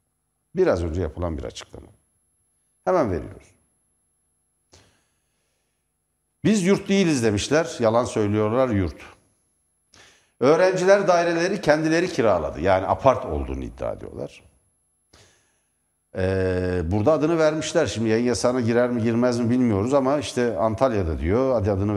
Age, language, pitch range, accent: 60-79, Turkish, 100-145 Hz, native